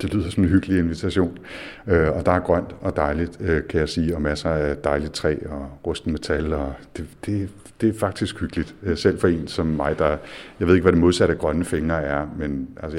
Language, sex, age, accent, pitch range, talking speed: Danish, male, 60-79, native, 75-90 Hz, 215 wpm